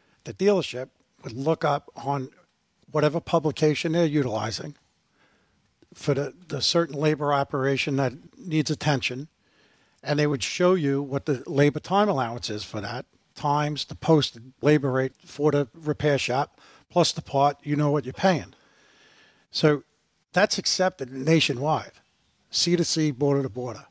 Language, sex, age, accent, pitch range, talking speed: English, male, 50-69, American, 135-160 Hz, 150 wpm